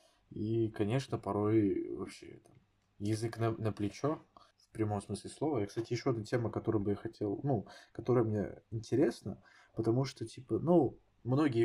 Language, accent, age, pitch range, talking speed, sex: Russian, native, 20-39, 100-115 Hz, 155 wpm, male